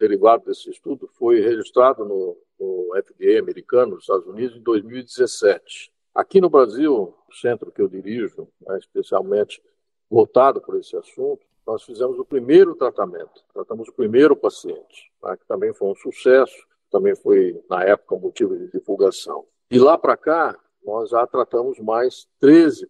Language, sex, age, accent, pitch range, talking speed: Portuguese, male, 60-79, Brazilian, 370-430 Hz, 155 wpm